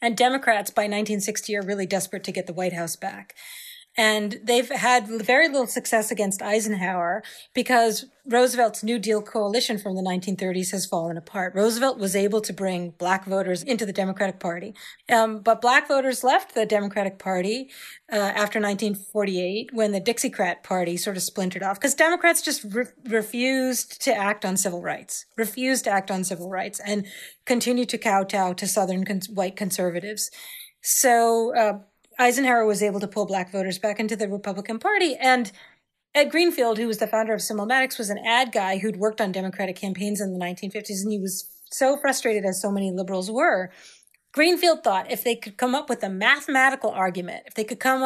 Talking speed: 180 wpm